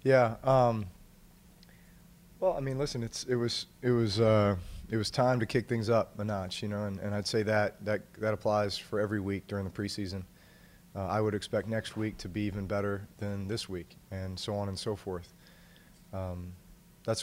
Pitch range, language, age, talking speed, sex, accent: 100-110 Hz, English, 30-49, 200 wpm, male, American